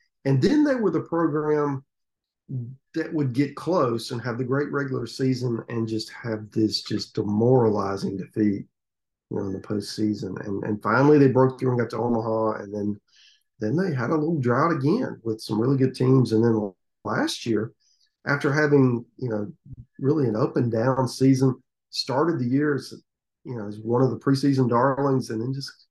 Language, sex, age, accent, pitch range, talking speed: English, male, 40-59, American, 110-140 Hz, 185 wpm